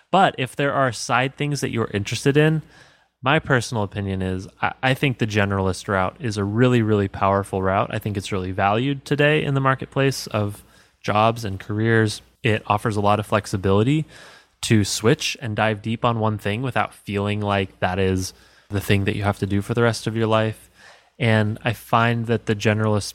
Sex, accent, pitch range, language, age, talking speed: male, American, 100-120 Hz, English, 20-39, 200 wpm